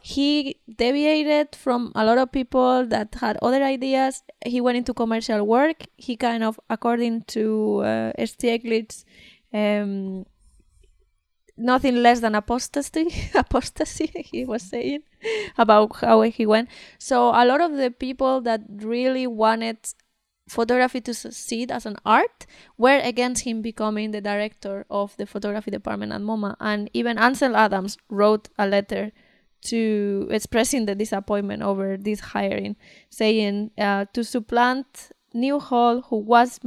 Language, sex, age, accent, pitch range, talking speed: English, female, 20-39, Spanish, 210-250 Hz, 135 wpm